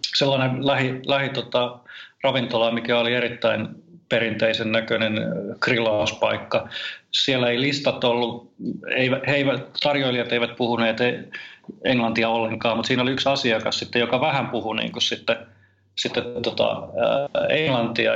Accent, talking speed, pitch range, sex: native, 120 wpm, 115-125 Hz, male